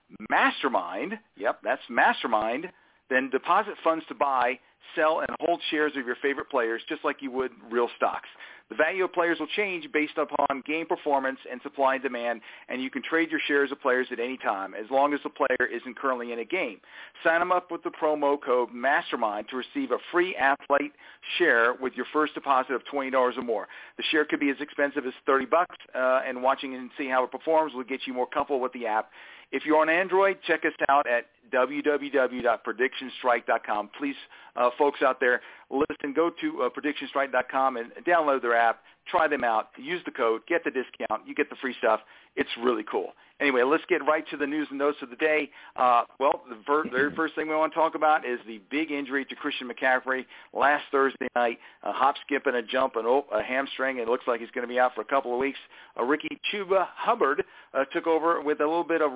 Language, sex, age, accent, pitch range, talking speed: English, male, 40-59, American, 125-155 Hz, 215 wpm